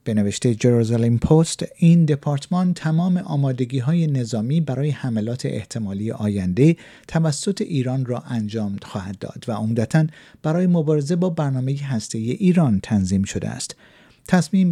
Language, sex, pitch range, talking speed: Persian, male, 120-165 Hz, 125 wpm